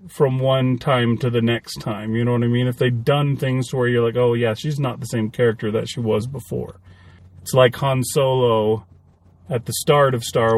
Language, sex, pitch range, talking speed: English, male, 110-140 Hz, 225 wpm